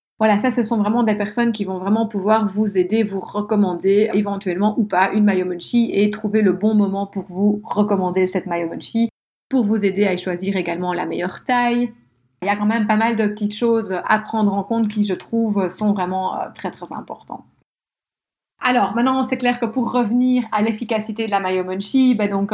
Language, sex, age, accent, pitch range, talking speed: French, female, 30-49, French, 190-230 Hz, 200 wpm